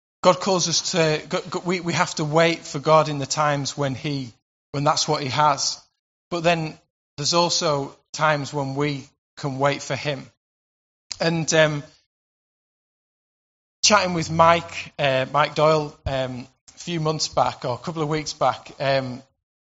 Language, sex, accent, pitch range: English, male, British, 135-160 Hz